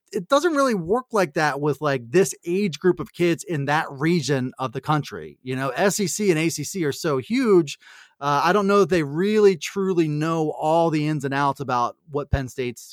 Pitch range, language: 145-195 Hz, English